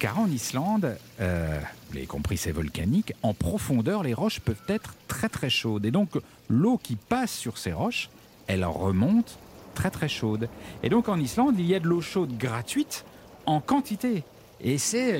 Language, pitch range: French, 100-150 Hz